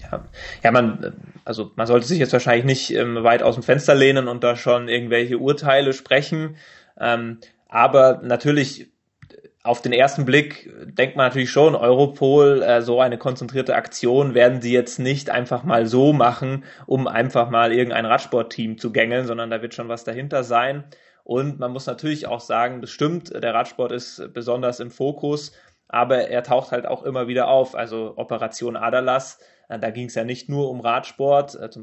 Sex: male